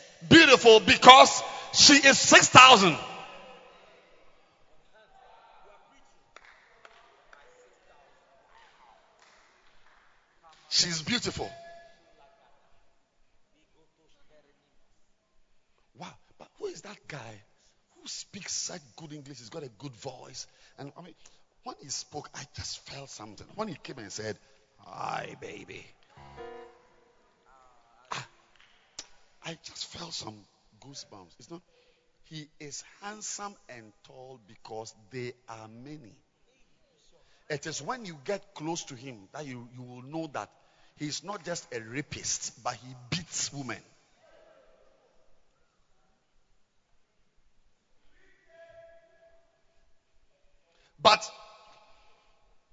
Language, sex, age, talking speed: English, male, 50-69, 95 wpm